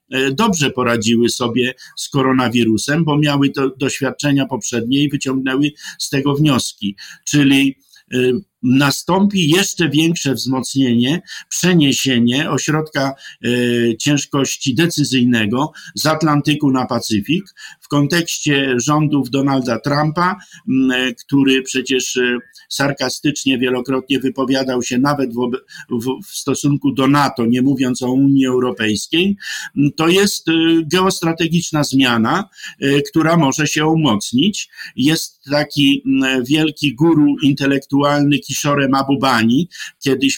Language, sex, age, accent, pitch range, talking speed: Polish, male, 50-69, native, 130-150 Hz, 100 wpm